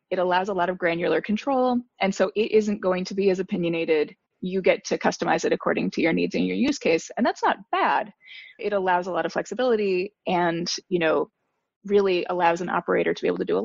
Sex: female